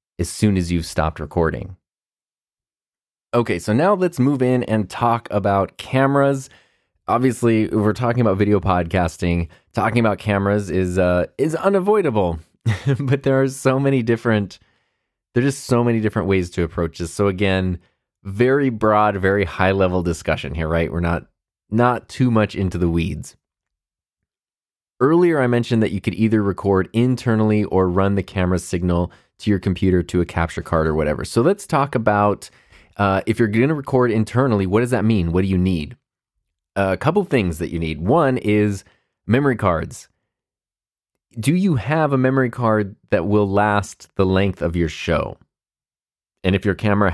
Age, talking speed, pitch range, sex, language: 20-39, 170 wpm, 90-120 Hz, male, English